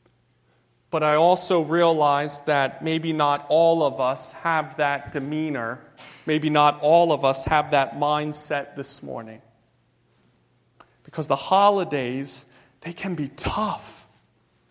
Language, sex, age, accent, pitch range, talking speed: English, male, 40-59, American, 145-180 Hz, 120 wpm